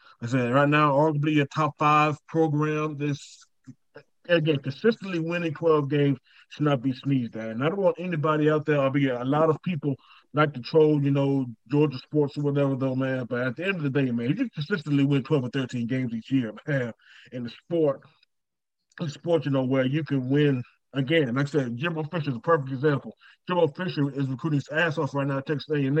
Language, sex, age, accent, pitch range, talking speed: English, male, 30-49, American, 135-155 Hz, 220 wpm